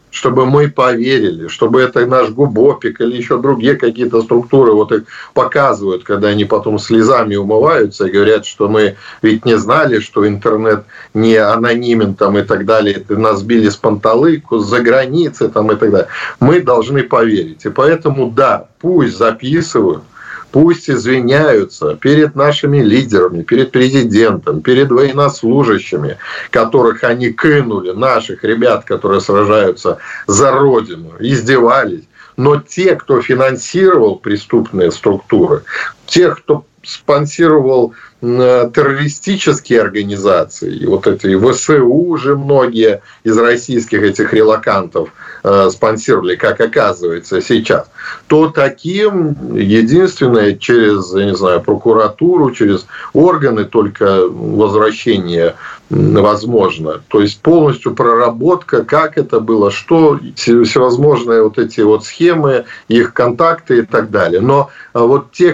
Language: Russian